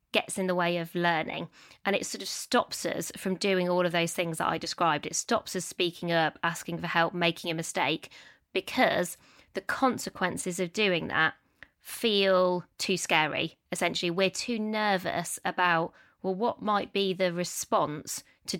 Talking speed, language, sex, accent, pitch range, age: 170 wpm, English, female, British, 180-230 Hz, 20-39